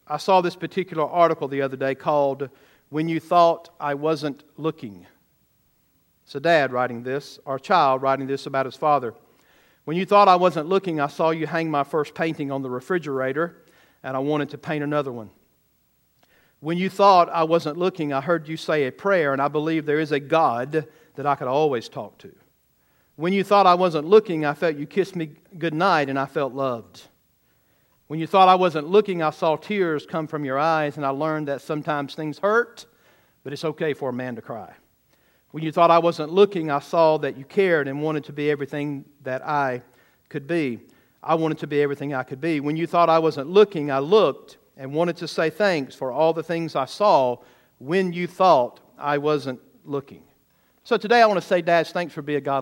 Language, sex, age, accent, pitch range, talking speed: English, male, 50-69, American, 140-170 Hz, 205 wpm